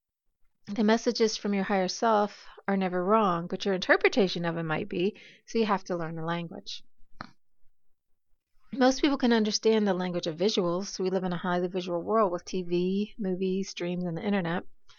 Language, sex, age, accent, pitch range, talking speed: English, female, 40-59, American, 175-215 Hz, 180 wpm